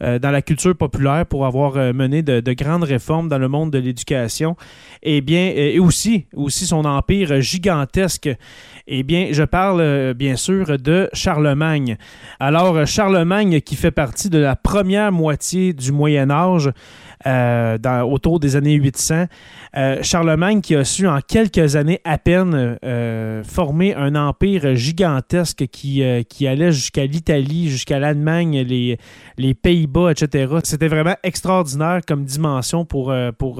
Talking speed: 150 wpm